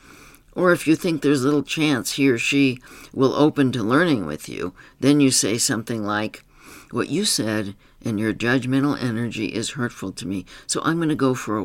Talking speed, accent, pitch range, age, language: 200 wpm, American, 115-145 Hz, 60-79, English